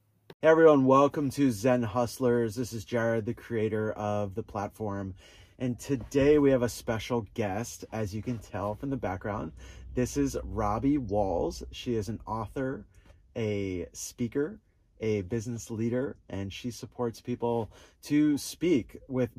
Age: 30-49